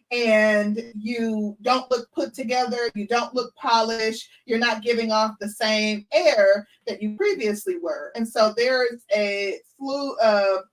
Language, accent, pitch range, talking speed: English, American, 195-230 Hz, 150 wpm